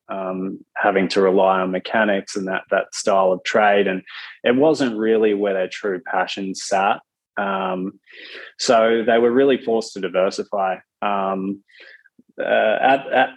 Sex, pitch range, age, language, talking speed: male, 95-110 Hz, 20-39, English, 150 wpm